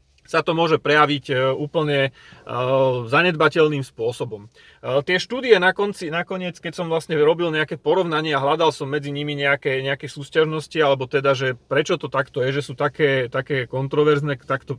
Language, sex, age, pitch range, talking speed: Slovak, male, 30-49, 140-170 Hz, 155 wpm